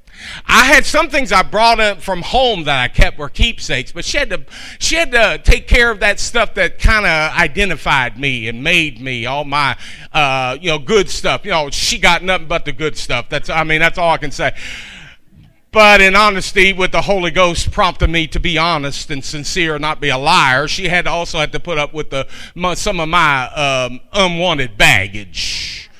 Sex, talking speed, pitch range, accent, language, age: male, 215 wpm, 155-205 Hz, American, English, 40-59